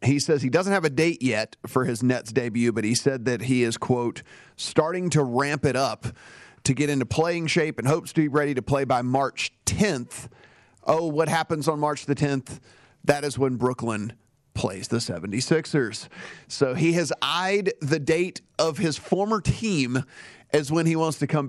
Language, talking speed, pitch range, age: English, 195 wpm, 125-150 Hz, 40-59